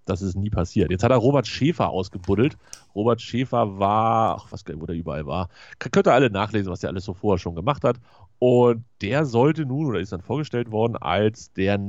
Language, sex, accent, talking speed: German, male, German, 205 wpm